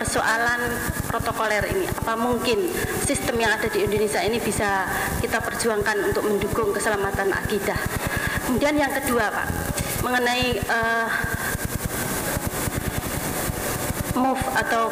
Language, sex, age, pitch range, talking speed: Indonesian, female, 30-49, 215-245 Hz, 105 wpm